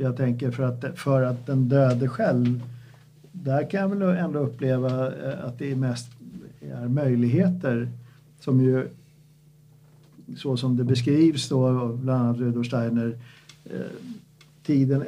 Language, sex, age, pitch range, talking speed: Swedish, male, 50-69, 125-150 Hz, 130 wpm